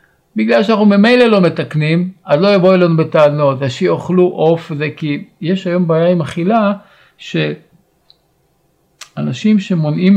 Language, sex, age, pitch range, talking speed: Hebrew, male, 50-69, 140-185 Hz, 120 wpm